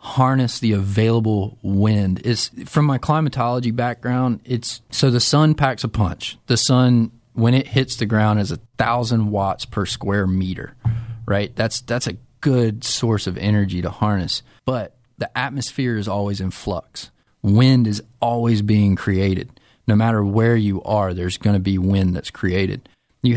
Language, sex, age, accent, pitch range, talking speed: English, male, 30-49, American, 100-125 Hz, 165 wpm